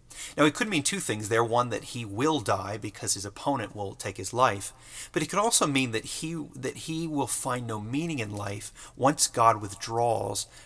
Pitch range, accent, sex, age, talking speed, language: 105-135 Hz, American, male, 30-49, 210 wpm, English